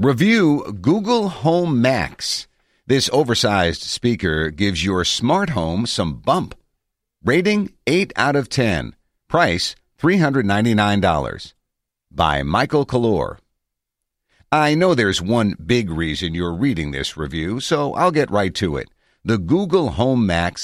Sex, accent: male, American